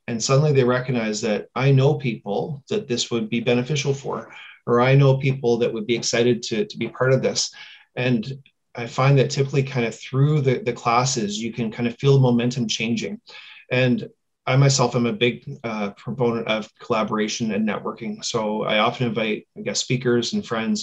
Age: 30-49